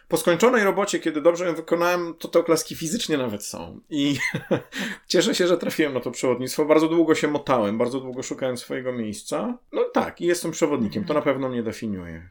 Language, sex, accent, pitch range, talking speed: Polish, male, native, 125-180 Hz, 200 wpm